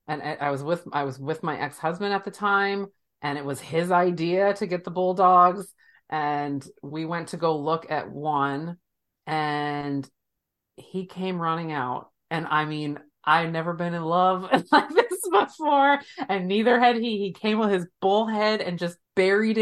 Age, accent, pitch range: 30-49, American, 145-200 Hz